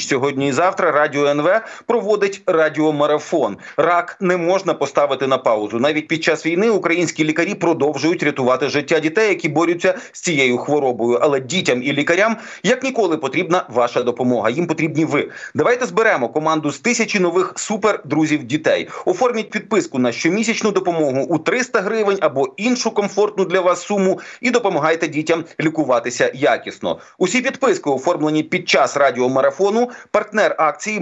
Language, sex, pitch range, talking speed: Ukrainian, male, 145-195 Hz, 145 wpm